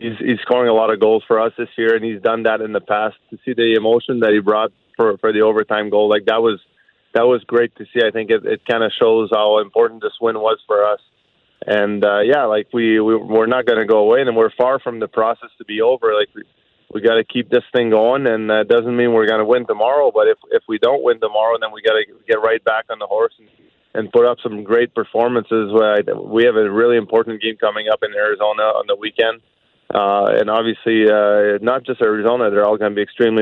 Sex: male